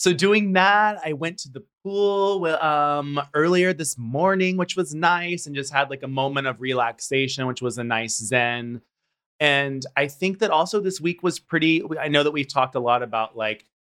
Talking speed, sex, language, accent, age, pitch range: 200 wpm, male, English, American, 30-49, 125-160 Hz